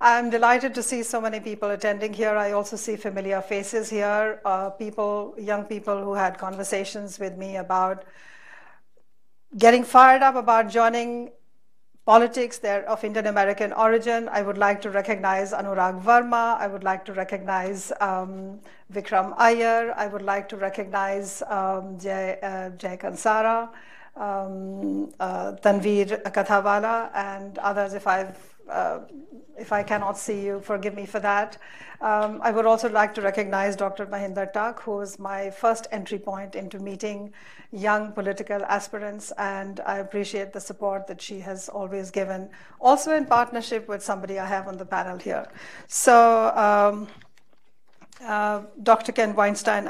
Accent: Indian